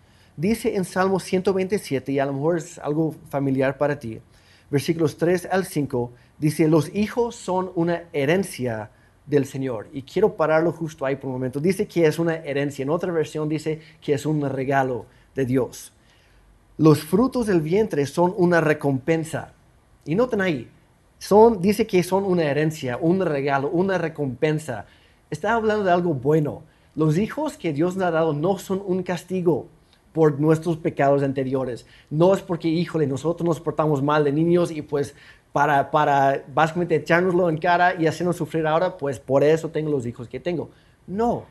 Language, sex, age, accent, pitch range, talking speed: Spanish, male, 30-49, Mexican, 135-175 Hz, 170 wpm